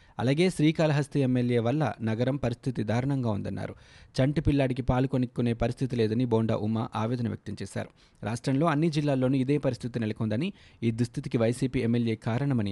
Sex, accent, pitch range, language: male, native, 110-135 Hz, Telugu